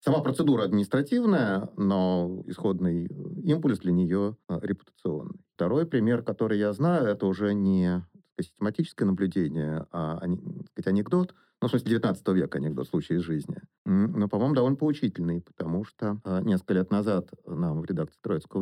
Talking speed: 160 wpm